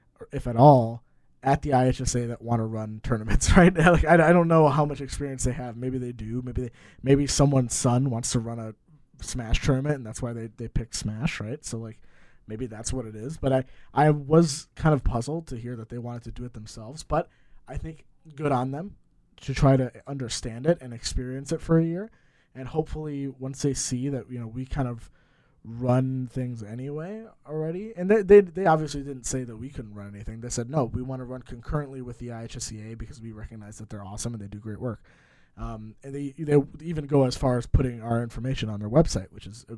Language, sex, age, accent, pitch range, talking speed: English, male, 20-39, American, 115-140 Hz, 230 wpm